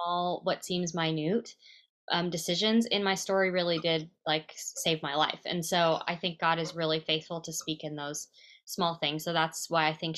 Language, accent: English, American